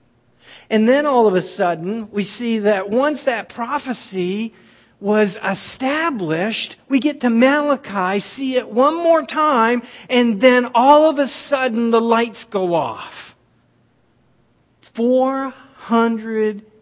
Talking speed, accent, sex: 120 wpm, American, male